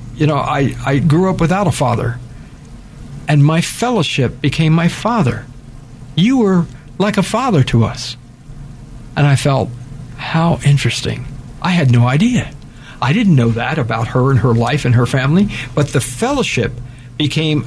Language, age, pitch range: English, 60-79, 125-160 Hz